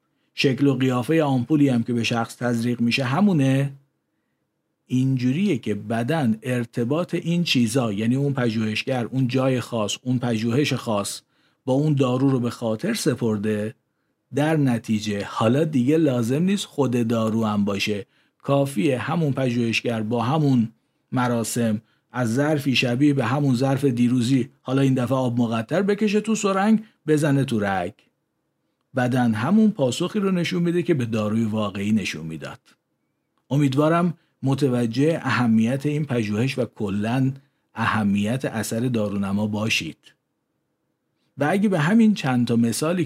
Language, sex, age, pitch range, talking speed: Persian, male, 50-69, 110-140 Hz, 135 wpm